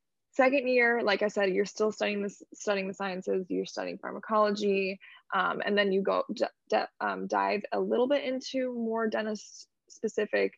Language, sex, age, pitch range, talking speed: English, female, 20-39, 185-215 Hz, 175 wpm